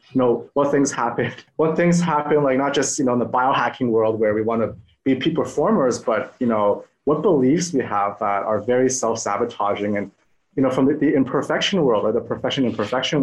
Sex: male